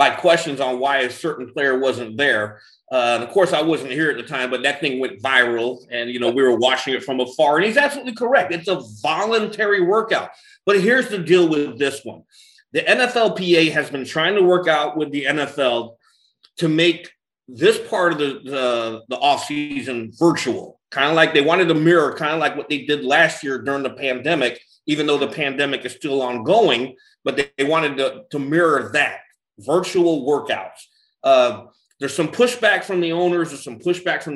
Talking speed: 200 wpm